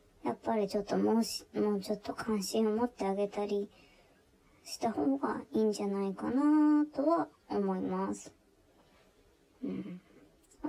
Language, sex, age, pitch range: Japanese, male, 20-39, 200-275 Hz